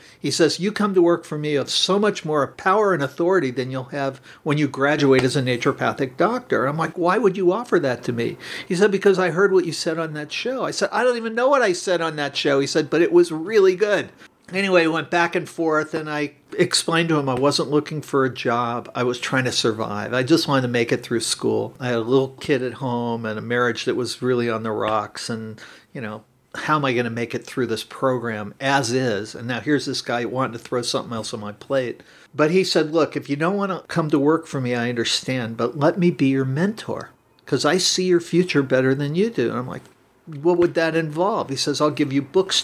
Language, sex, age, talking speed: English, male, 50-69, 255 wpm